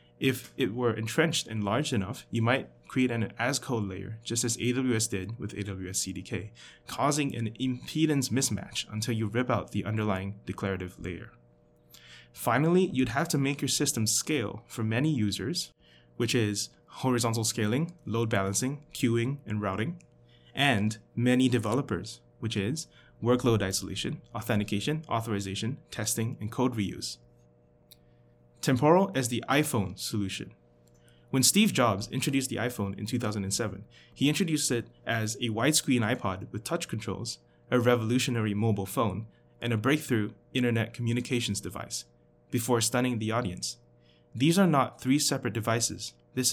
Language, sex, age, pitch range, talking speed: English, male, 20-39, 95-130 Hz, 140 wpm